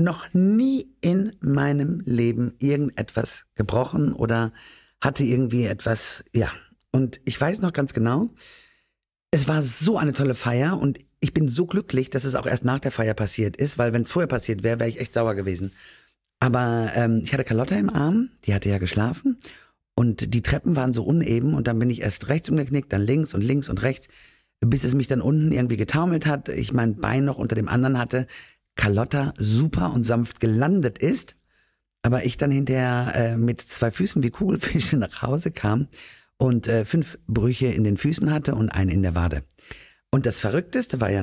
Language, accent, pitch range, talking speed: German, German, 115-145 Hz, 190 wpm